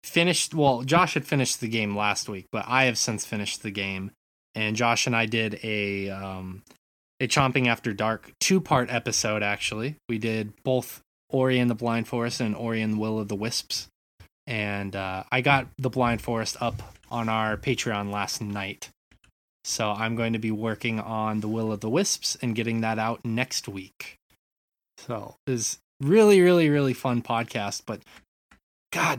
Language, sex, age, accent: English, male, 20-39, American